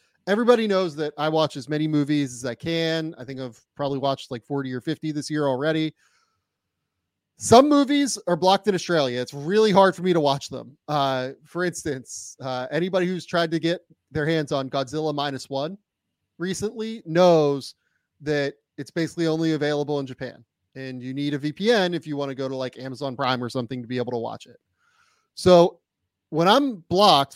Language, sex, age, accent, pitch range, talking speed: English, male, 30-49, American, 140-185 Hz, 190 wpm